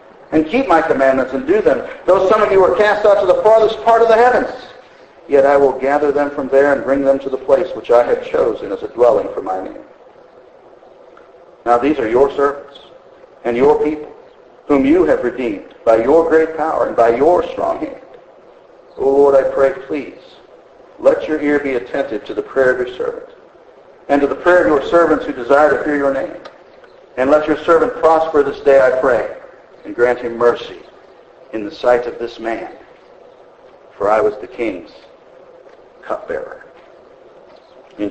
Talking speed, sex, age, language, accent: 190 wpm, male, 50-69, English, American